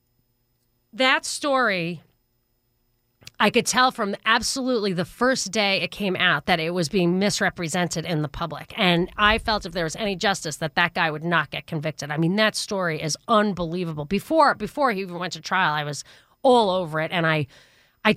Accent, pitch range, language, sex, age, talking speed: American, 160-205 Hz, English, female, 40-59, 190 wpm